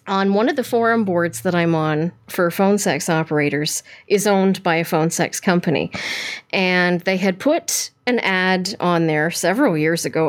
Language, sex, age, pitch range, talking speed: English, female, 40-59, 160-195 Hz, 180 wpm